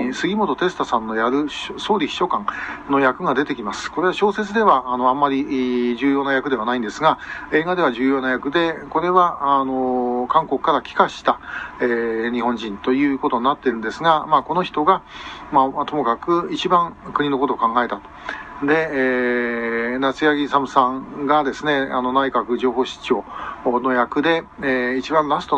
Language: Japanese